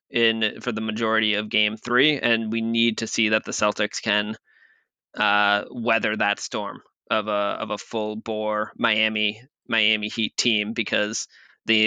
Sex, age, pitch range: male, 20-39, 110-130 Hz